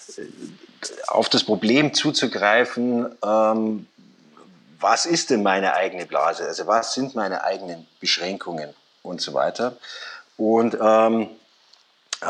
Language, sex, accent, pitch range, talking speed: German, male, German, 100-130 Hz, 105 wpm